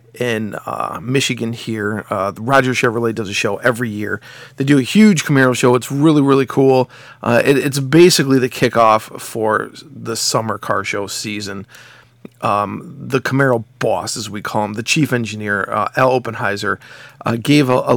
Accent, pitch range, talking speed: American, 110-140 Hz, 175 wpm